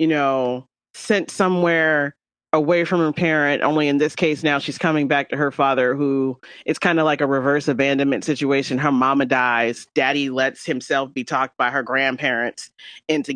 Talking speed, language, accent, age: 180 wpm, English, American, 30-49